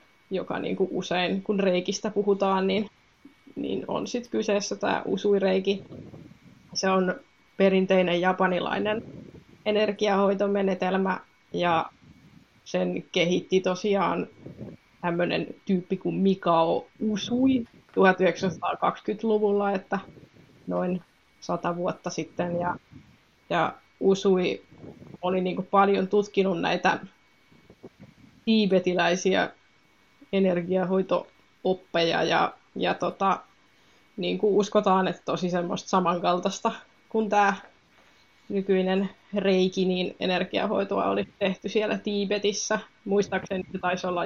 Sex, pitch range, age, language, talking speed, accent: female, 180-205 Hz, 20-39, Finnish, 95 wpm, native